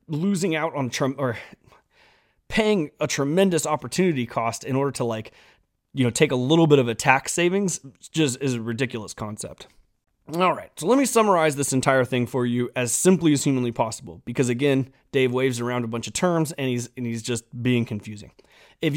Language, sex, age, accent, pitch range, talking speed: English, male, 30-49, American, 125-165 Hz, 195 wpm